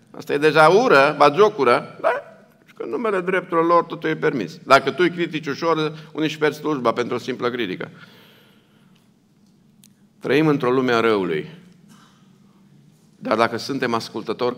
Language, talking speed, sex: Romanian, 145 wpm, male